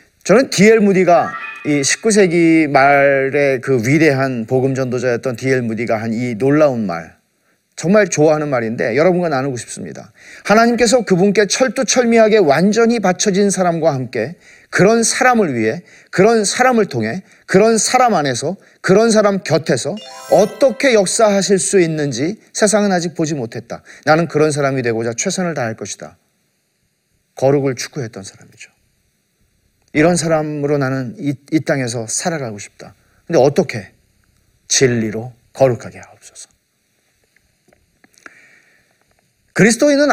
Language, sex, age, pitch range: Korean, male, 40-59, 130-200 Hz